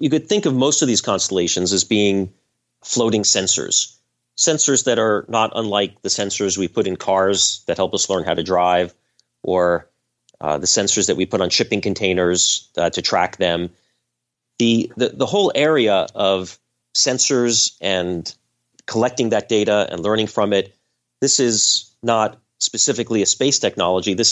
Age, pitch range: 30-49, 90-110 Hz